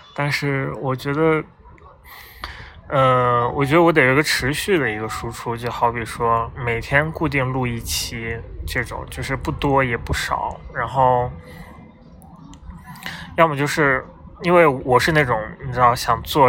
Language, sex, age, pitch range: Chinese, male, 20-39, 115-130 Hz